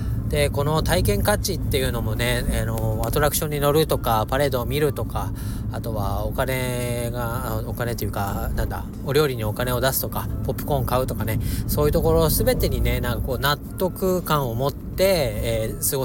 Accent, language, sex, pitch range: native, Japanese, male, 110-150 Hz